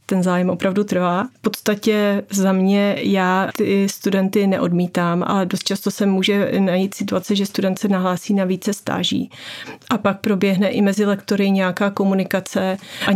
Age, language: 30-49, Czech